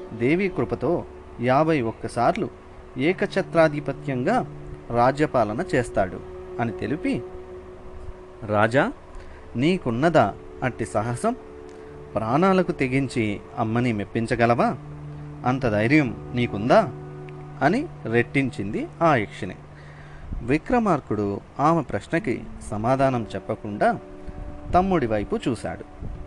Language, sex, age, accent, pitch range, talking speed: Telugu, male, 30-49, native, 100-145 Hz, 75 wpm